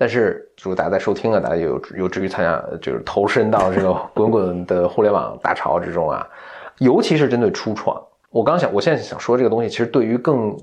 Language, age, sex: Chinese, 20-39, male